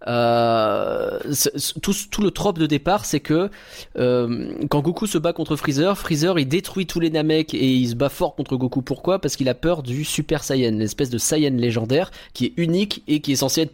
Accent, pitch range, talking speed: French, 130-180 Hz, 215 wpm